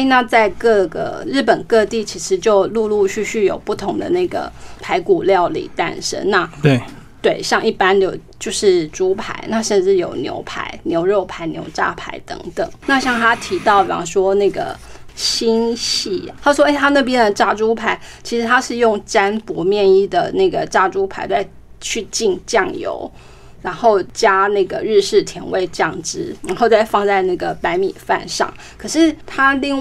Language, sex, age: Chinese, female, 20-39